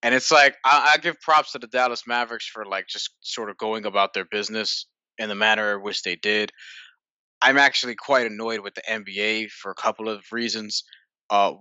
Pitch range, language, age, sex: 100-125 Hz, English, 20-39, male